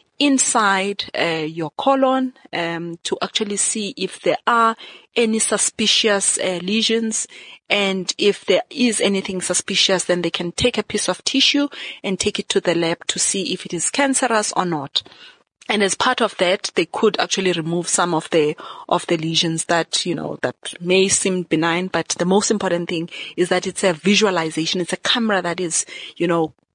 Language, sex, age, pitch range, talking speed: English, female, 30-49, 180-240 Hz, 185 wpm